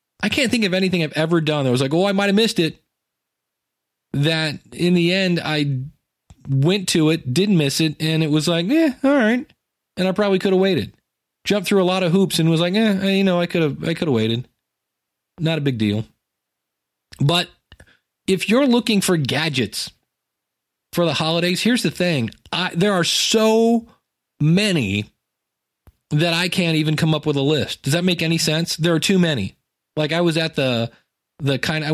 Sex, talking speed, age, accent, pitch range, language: male, 195 wpm, 40-59, American, 125-175 Hz, English